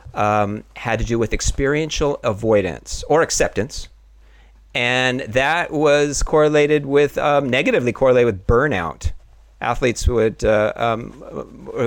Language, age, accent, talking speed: English, 40-59, American, 110 wpm